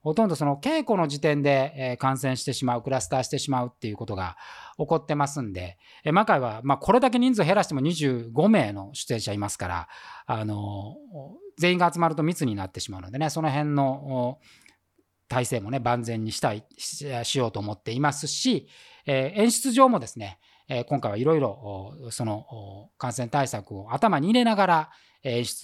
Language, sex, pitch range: Japanese, male, 115-170 Hz